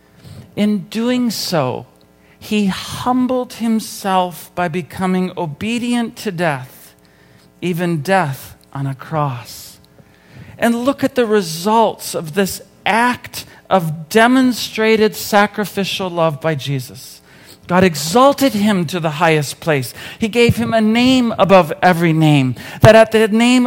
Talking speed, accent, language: 125 wpm, American, English